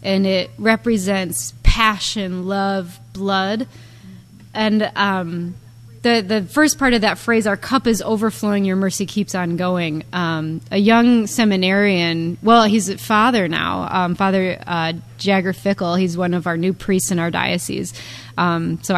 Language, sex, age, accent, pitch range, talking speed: English, female, 20-39, American, 180-230 Hz, 155 wpm